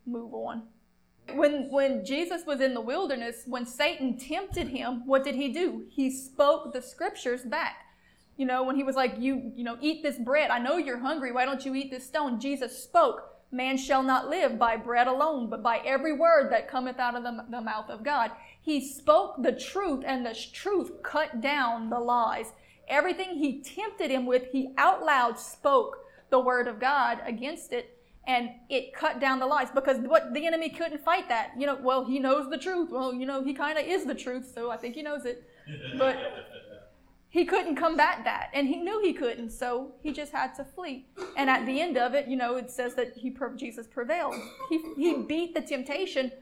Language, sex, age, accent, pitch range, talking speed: English, female, 30-49, American, 250-310 Hz, 210 wpm